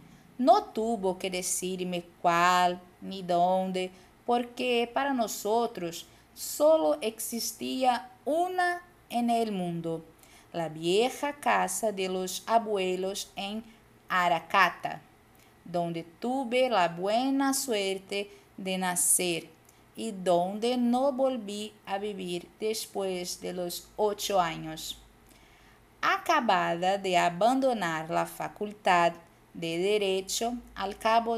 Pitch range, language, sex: 180-225 Hz, Portuguese, female